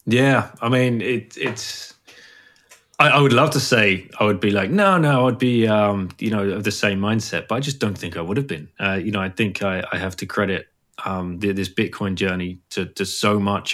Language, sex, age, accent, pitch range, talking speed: English, male, 20-39, British, 95-115 Hz, 235 wpm